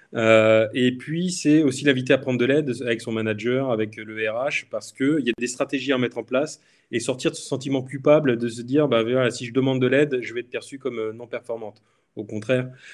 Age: 20-39